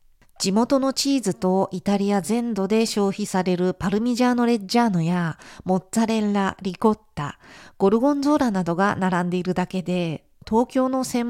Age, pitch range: 50-69, 180-240 Hz